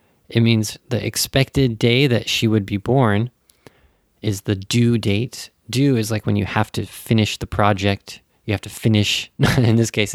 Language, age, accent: Japanese, 20-39, American